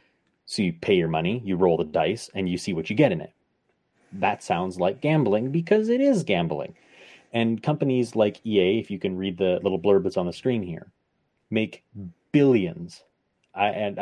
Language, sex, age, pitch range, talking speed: English, male, 30-49, 100-130 Hz, 190 wpm